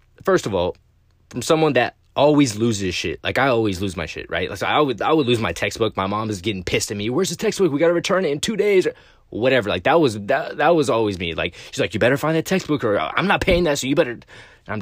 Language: English